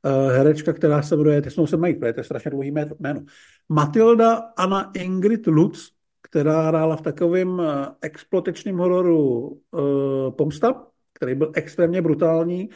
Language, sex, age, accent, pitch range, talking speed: Czech, male, 50-69, native, 145-170 Hz, 145 wpm